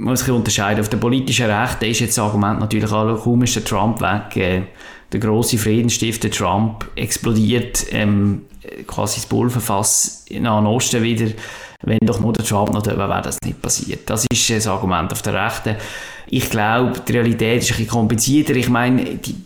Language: German